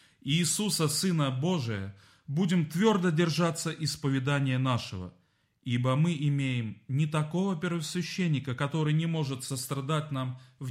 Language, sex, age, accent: Russian, male, 30-49, native